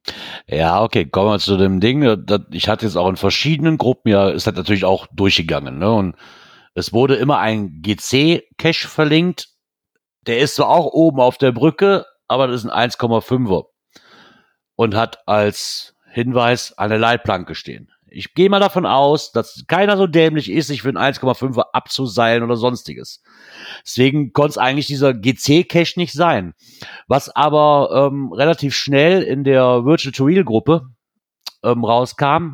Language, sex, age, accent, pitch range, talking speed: German, male, 50-69, German, 105-140 Hz, 160 wpm